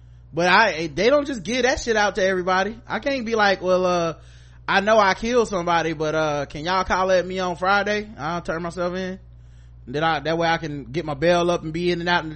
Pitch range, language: 115-175 Hz, English